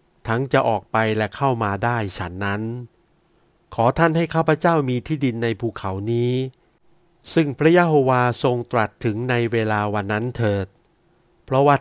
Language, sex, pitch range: Thai, male, 110-150 Hz